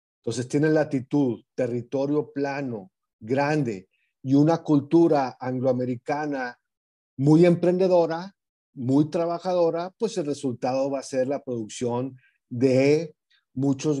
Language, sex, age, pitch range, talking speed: Spanish, male, 40-59, 125-155 Hz, 105 wpm